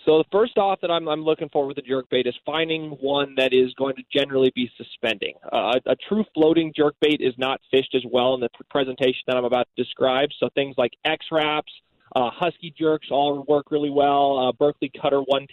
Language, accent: English, American